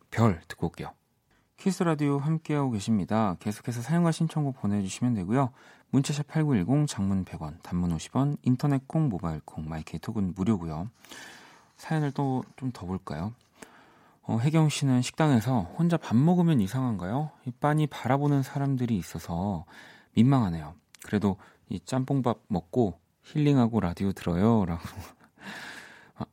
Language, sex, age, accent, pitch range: Korean, male, 40-59, native, 95-140 Hz